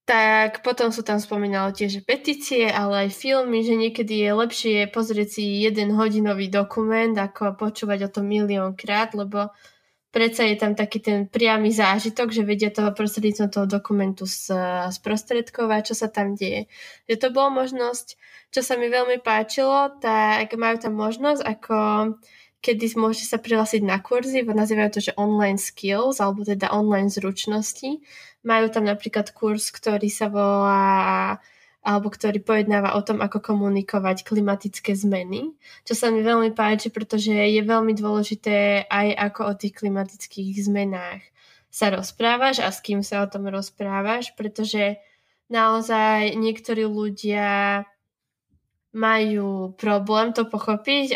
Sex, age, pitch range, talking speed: female, 10-29, 205-225 Hz, 140 wpm